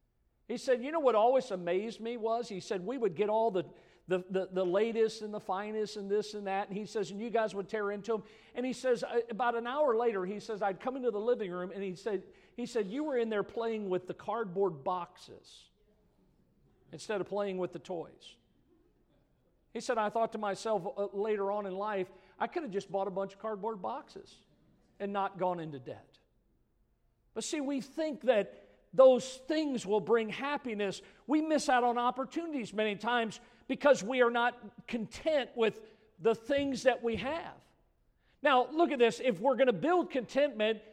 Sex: male